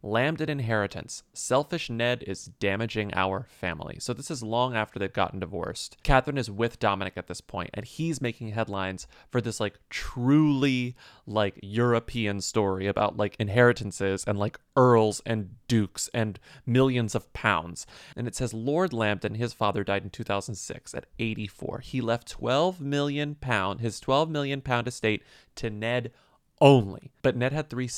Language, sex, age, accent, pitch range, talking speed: English, male, 30-49, American, 105-130 Hz, 160 wpm